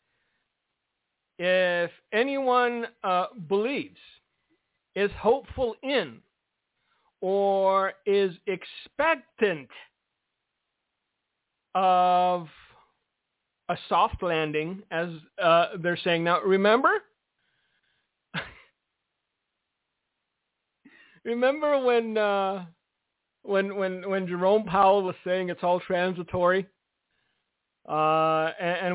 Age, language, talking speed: 50-69, English, 75 wpm